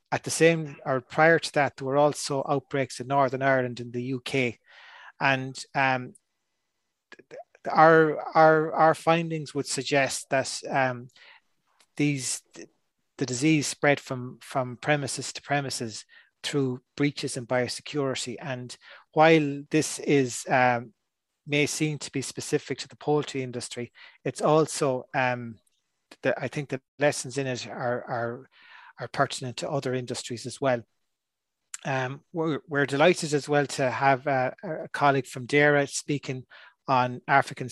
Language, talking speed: English, 145 wpm